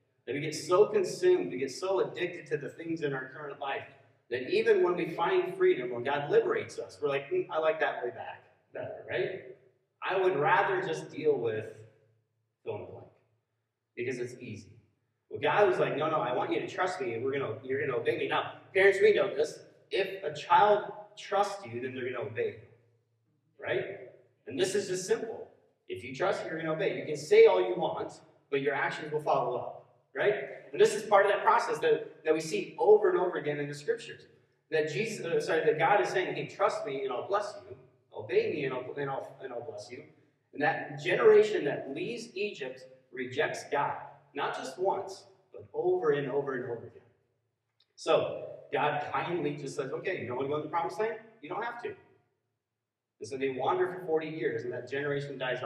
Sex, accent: male, American